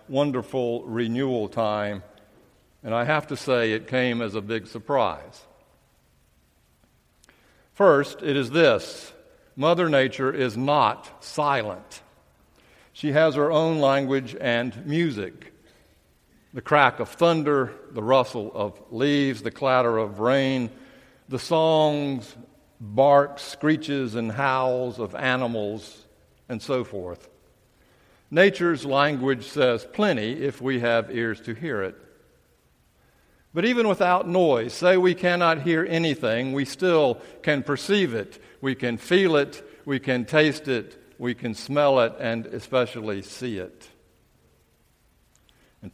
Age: 60-79